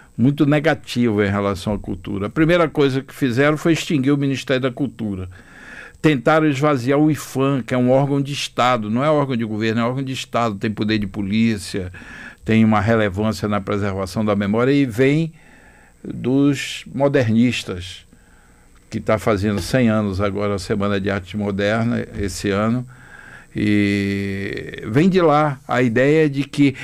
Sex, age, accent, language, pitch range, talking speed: male, 60-79, Brazilian, Portuguese, 105-135 Hz, 160 wpm